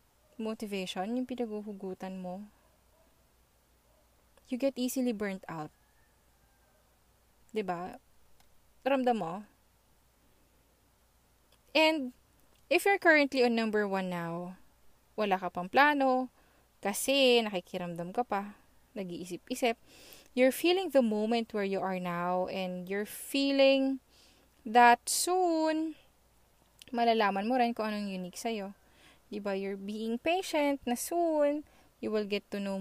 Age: 20-39